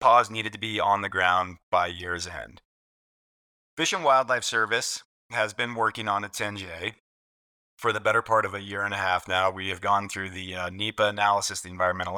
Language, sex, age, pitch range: English, male, 30-49, 90-110 Hz